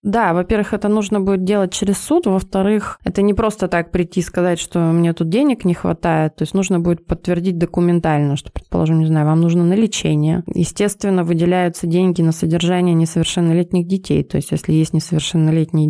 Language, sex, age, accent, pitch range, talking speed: Russian, female, 20-39, native, 160-185 Hz, 180 wpm